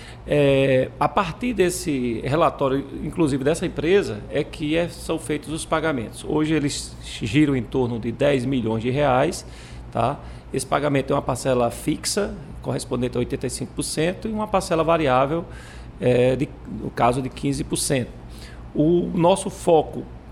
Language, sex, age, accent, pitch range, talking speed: Portuguese, male, 40-59, Brazilian, 120-155 Hz, 125 wpm